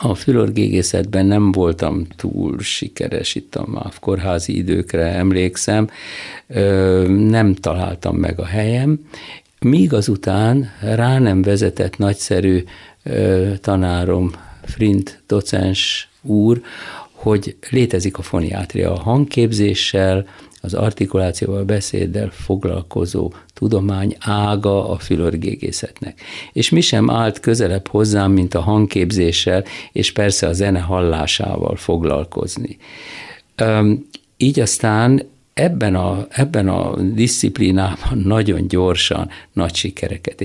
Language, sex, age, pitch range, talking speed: Hungarian, male, 50-69, 95-110 Hz, 95 wpm